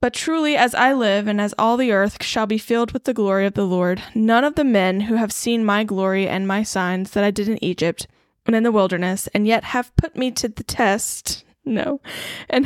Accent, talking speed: American, 235 wpm